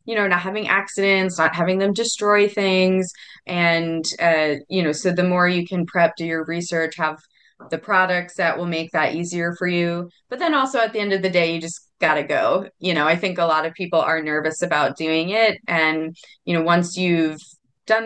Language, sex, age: English, female, 20-39